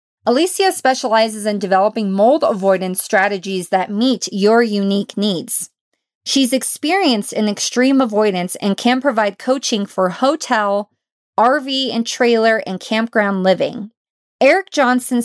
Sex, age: female, 30-49